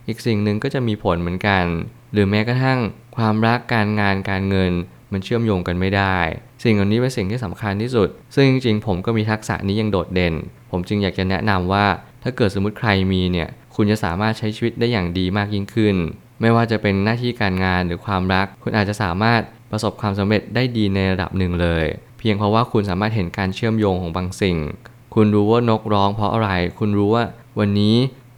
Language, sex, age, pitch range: Thai, male, 20-39, 95-115 Hz